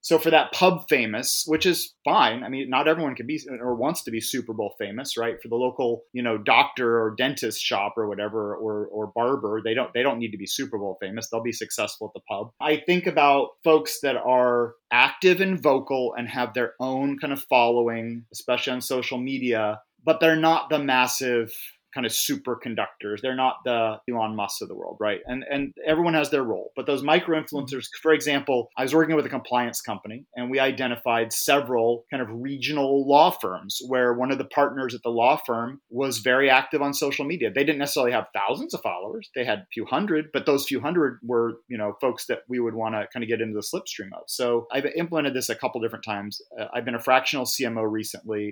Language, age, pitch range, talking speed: English, 30-49, 115-140 Hz, 220 wpm